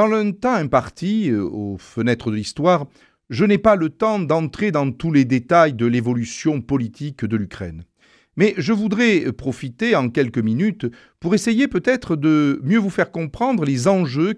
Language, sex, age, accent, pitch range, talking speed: French, male, 50-69, French, 125-205 Hz, 165 wpm